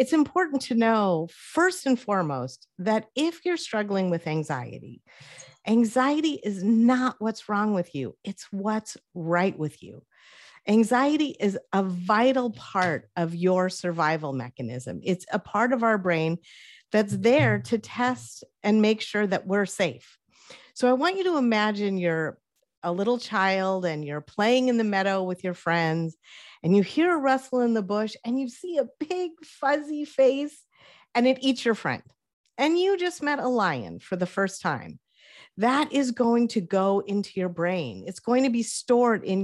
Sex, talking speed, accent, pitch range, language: female, 170 wpm, American, 175-250 Hz, English